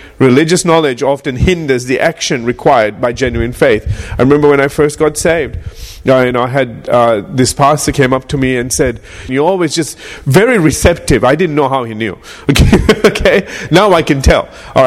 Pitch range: 130-170 Hz